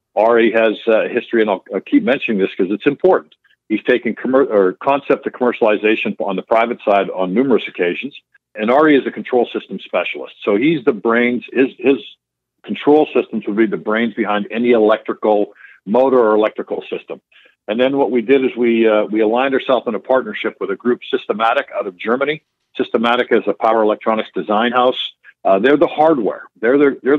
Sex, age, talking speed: male, 50-69, 190 wpm